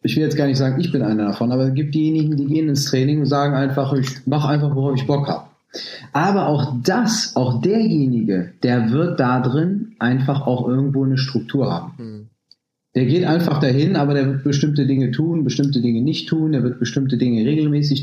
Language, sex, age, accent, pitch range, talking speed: German, male, 30-49, German, 130-165 Hz, 205 wpm